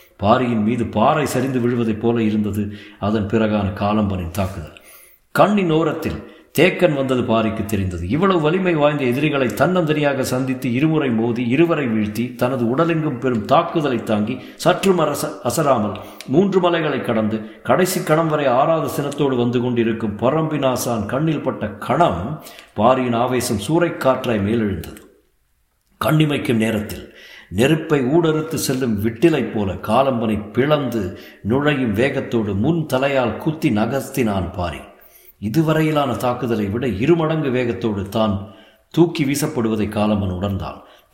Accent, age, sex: native, 50-69, male